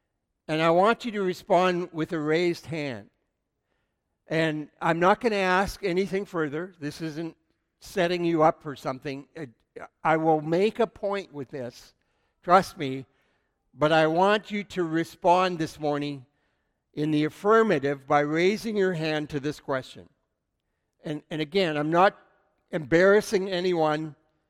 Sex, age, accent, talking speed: male, 60-79, American, 145 wpm